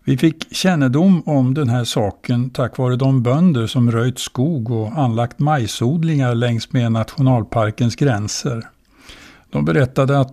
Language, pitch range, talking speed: Swedish, 115-140 Hz, 140 wpm